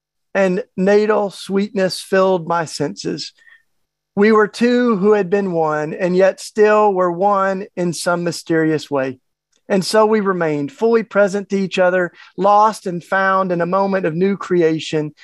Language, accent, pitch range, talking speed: English, American, 155-200 Hz, 160 wpm